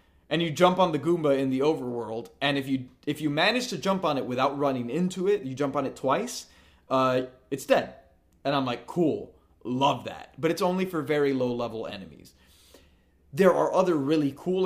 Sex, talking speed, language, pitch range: male, 200 wpm, English, 120-150 Hz